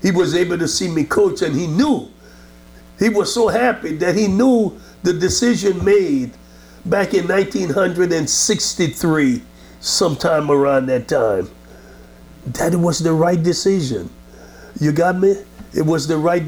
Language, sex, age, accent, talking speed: English, male, 60-79, American, 145 wpm